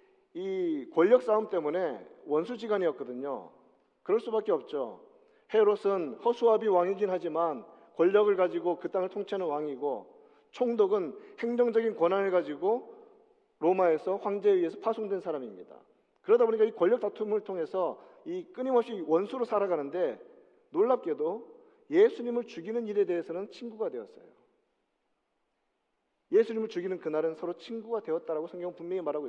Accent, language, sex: native, Korean, male